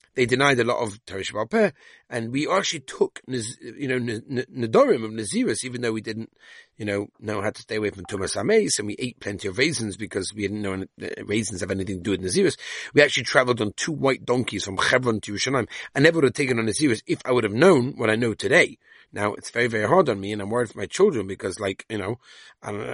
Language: English